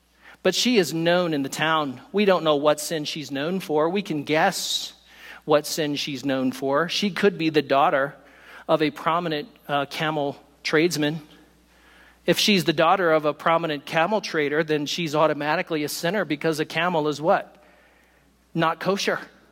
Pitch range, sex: 150-195 Hz, male